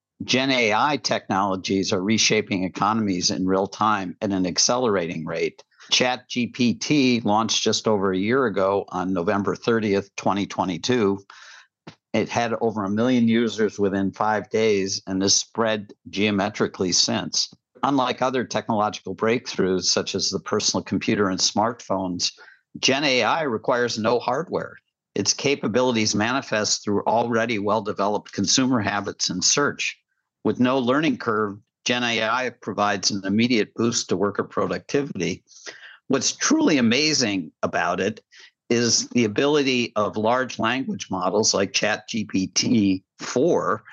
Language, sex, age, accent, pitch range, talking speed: English, male, 50-69, American, 100-120 Hz, 125 wpm